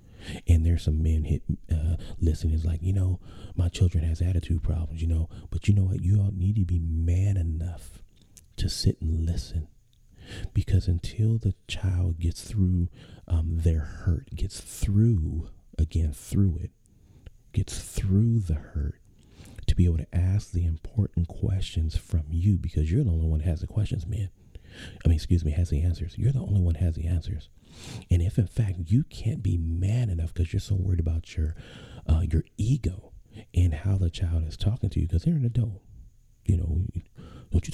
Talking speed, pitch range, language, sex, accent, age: 190 wpm, 85-105 Hz, English, male, American, 40-59